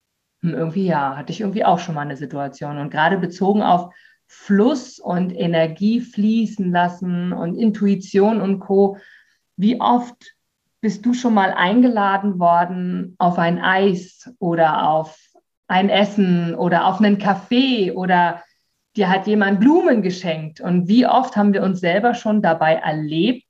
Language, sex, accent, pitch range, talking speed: German, female, German, 170-210 Hz, 150 wpm